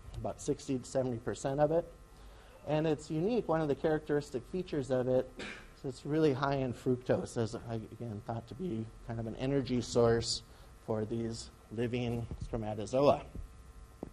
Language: English